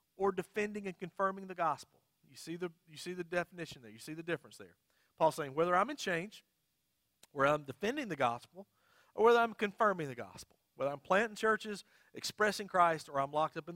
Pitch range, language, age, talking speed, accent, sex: 135-185 Hz, English, 40-59, 205 wpm, American, male